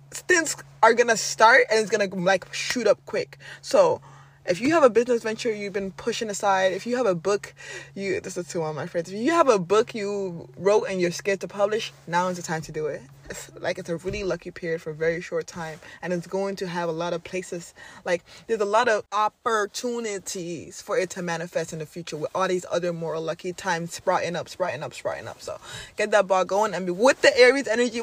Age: 20-39